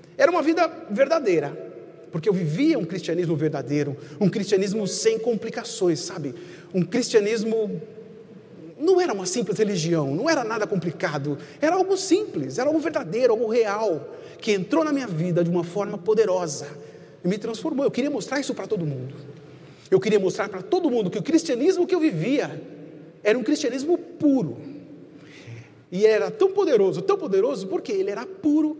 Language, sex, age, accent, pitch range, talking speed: Portuguese, male, 40-59, Brazilian, 165-275 Hz, 165 wpm